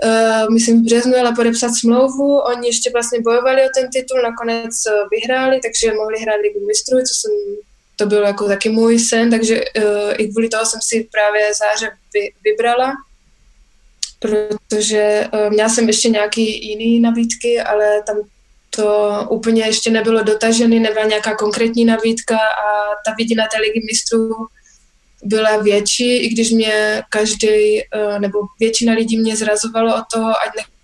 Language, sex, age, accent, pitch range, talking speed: Czech, female, 20-39, native, 215-230 Hz, 155 wpm